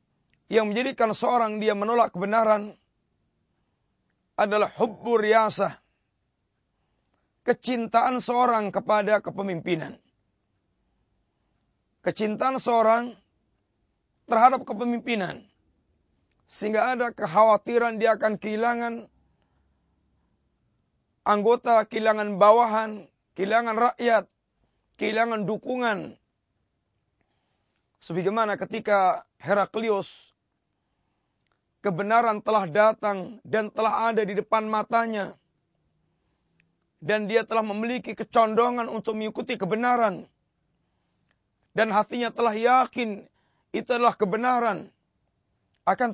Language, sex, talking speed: Malay, male, 75 wpm